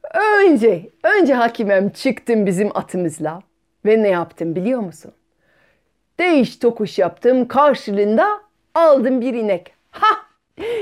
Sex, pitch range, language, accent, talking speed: female, 190-305 Hz, Turkish, native, 105 wpm